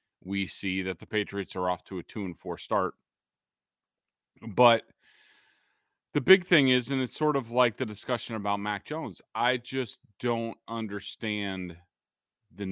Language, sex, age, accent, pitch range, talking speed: English, male, 30-49, American, 90-110 Hz, 155 wpm